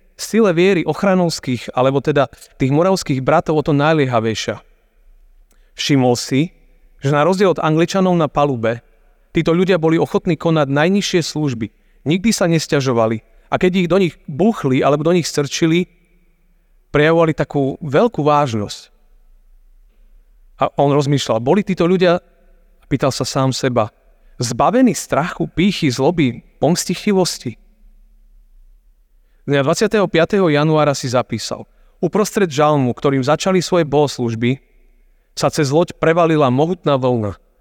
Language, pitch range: Slovak, 125-175 Hz